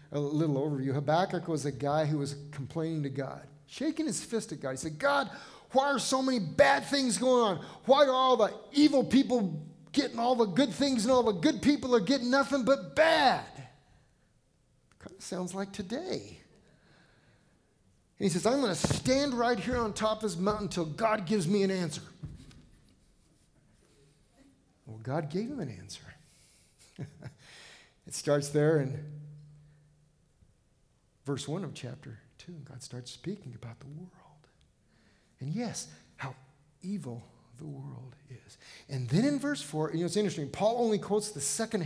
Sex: male